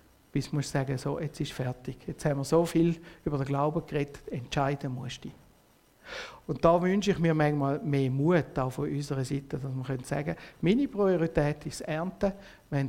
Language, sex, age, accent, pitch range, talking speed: German, male, 60-79, Austrian, 140-170 Hz, 185 wpm